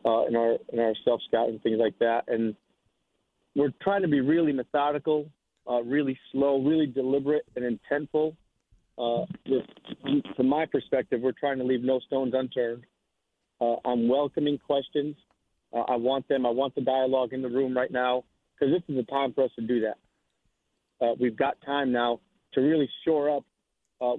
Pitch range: 125-145 Hz